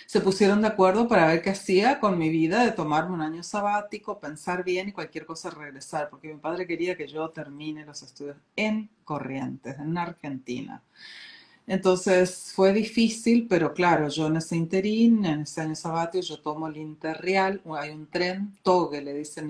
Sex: female